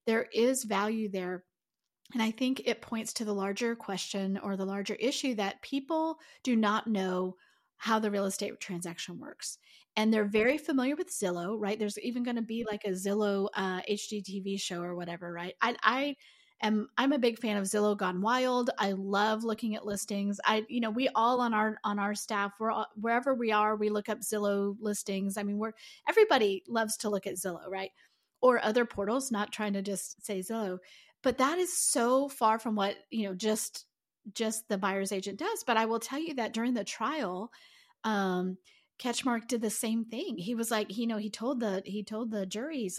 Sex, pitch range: female, 205-260 Hz